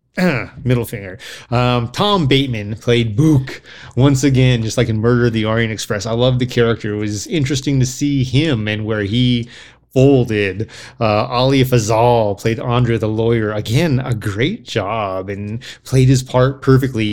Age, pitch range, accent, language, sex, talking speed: 30-49, 110-130 Hz, American, English, male, 165 wpm